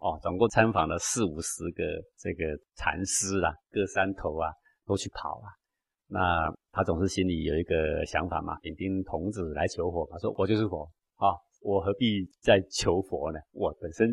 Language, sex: Chinese, male